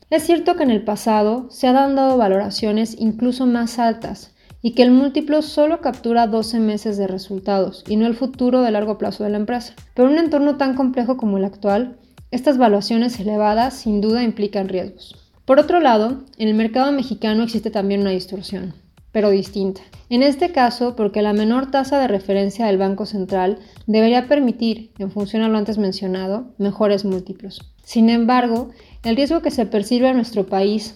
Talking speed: 180 wpm